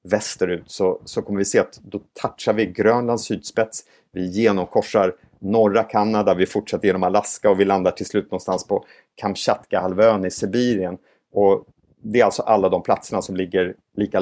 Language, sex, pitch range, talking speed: Swedish, male, 95-110 Hz, 175 wpm